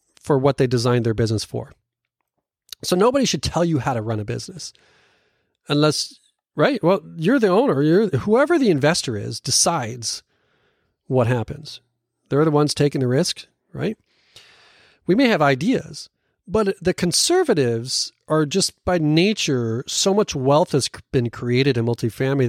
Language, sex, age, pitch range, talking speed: English, male, 40-59, 120-150 Hz, 150 wpm